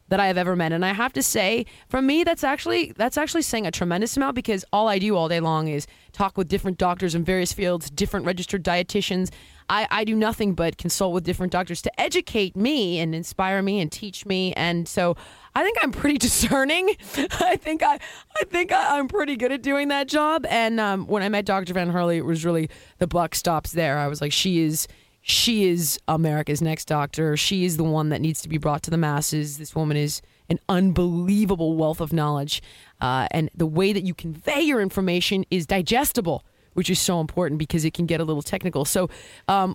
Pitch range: 165-230 Hz